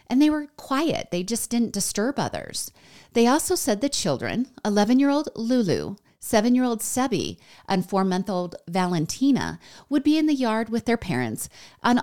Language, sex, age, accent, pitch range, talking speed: English, female, 30-49, American, 165-220 Hz, 150 wpm